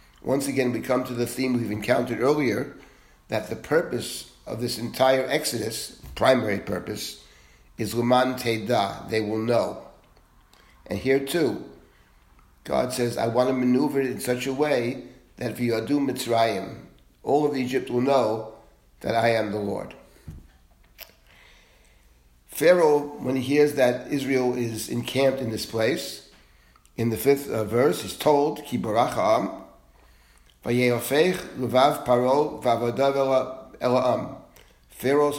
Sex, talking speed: male, 120 wpm